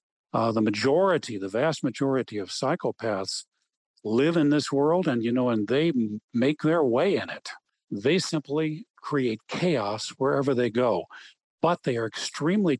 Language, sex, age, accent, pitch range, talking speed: English, male, 50-69, American, 120-155 Hz, 155 wpm